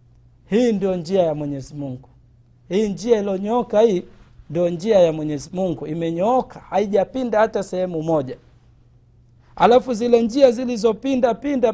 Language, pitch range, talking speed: Swahili, 145-215 Hz, 130 wpm